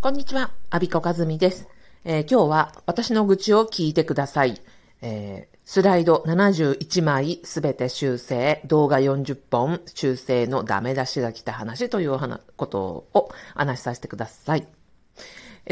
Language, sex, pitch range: Japanese, female, 135-225 Hz